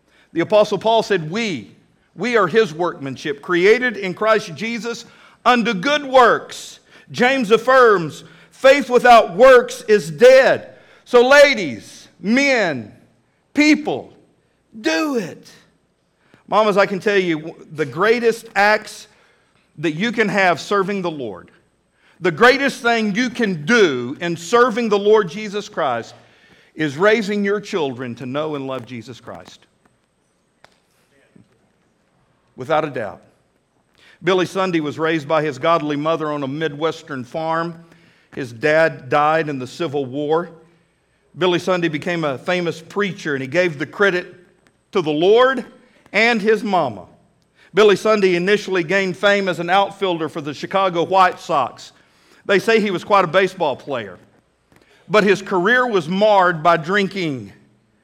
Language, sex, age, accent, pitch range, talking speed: English, male, 50-69, American, 165-220 Hz, 135 wpm